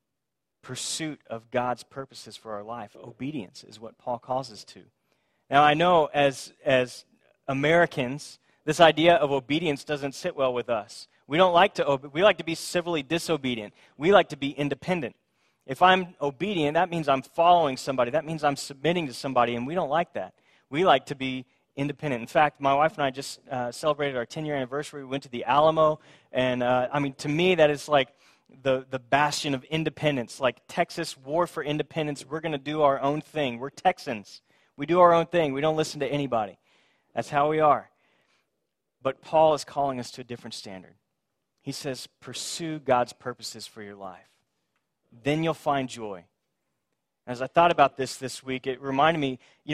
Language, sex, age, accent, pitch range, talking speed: English, male, 30-49, American, 130-155 Hz, 190 wpm